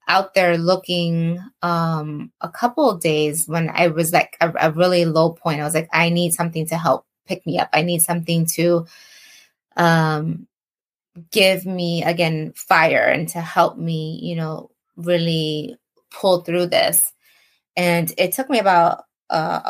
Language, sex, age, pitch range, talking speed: English, female, 20-39, 160-180 Hz, 160 wpm